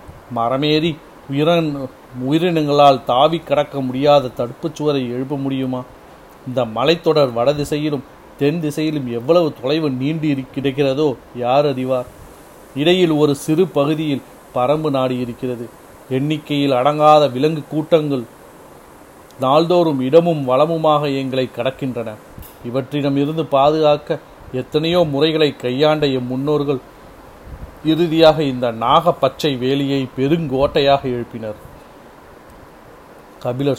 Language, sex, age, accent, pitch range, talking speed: Tamil, male, 40-59, native, 125-150 Hz, 90 wpm